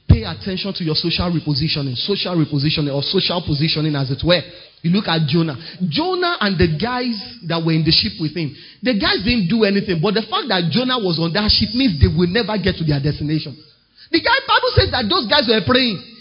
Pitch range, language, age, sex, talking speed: 165-240 Hz, English, 30-49, male, 220 wpm